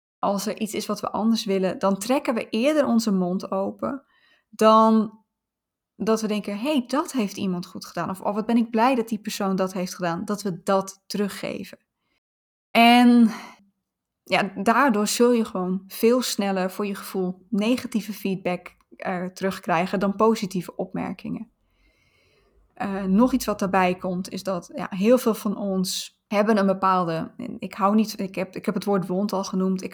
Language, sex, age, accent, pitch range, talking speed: Dutch, female, 20-39, Dutch, 190-220 Hz, 170 wpm